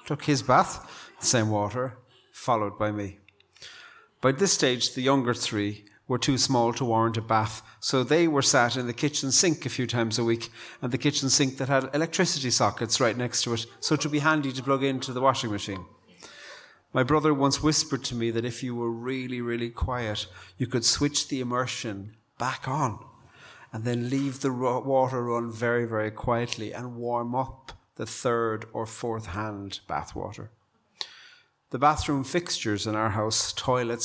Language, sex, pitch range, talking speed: English, male, 115-135 Hz, 180 wpm